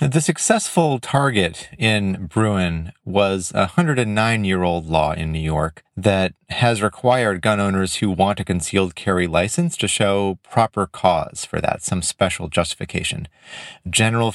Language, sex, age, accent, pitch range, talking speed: English, male, 30-49, American, 90-125 Hz, 140 wpm